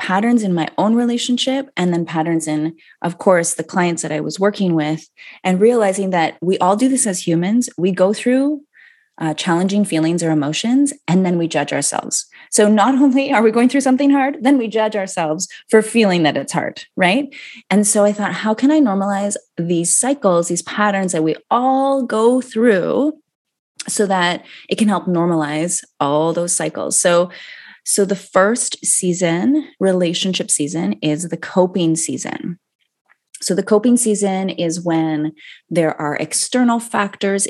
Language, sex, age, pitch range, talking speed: English, female, 20-39, 165-220 Hz, 170 wpm